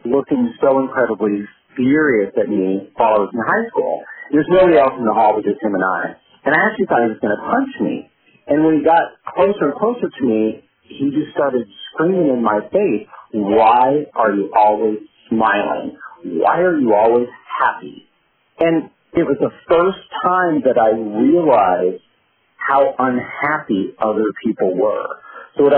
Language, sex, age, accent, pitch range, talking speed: English, male, 40-59, American, 110-155 Hz, 170 wpm